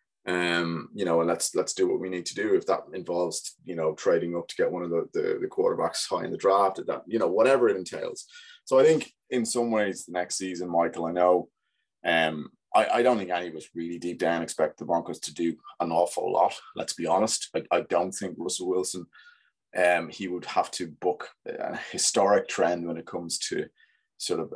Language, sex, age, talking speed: English, male, 20-39, 225 wpm